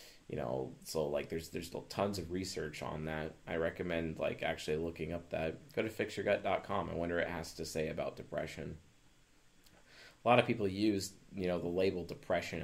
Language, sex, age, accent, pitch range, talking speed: English, male, 30-49, American, 80-95 Hz, 195 wpm